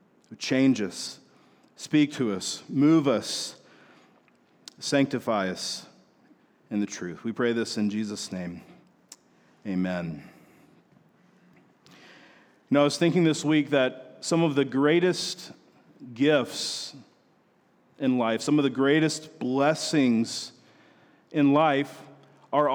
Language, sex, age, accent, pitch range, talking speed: English, male, 40-59, American, 130-155 Hz, 110 wpm